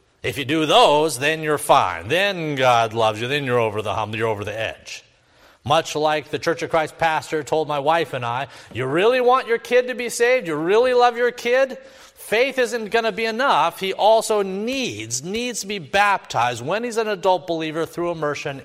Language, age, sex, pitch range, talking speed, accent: English, 50-69, male, 115-175 Hz, 210 wpm, American